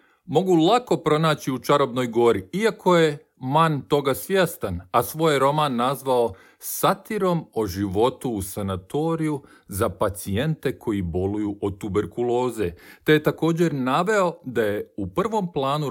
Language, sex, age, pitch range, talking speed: Croatian, male, 40-59, 105-165 Hz, 130 wpm